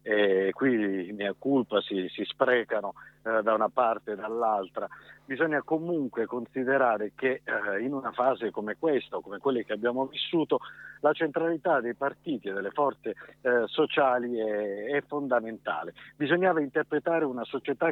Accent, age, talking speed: native, 50-69, 155 wpm